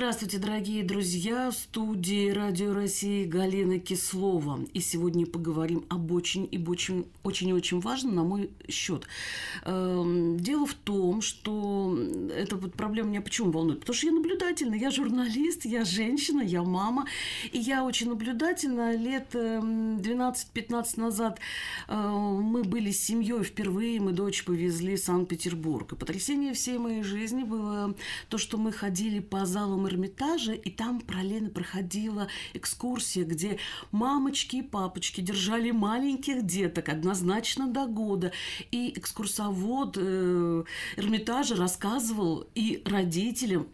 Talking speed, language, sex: 130 wpm, Russian, female